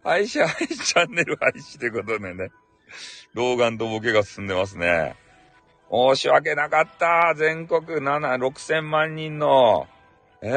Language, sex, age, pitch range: Japanese, male, 40-59, 105-155 Hz